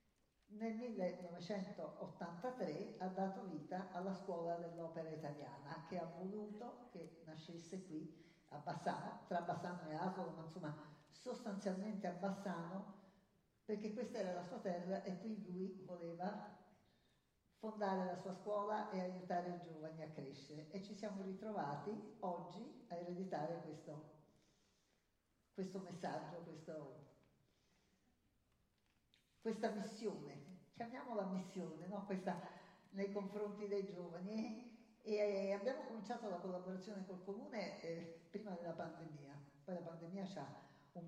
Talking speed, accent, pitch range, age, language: 120 wpm, native, 165-205 Hz, 50-69, Italian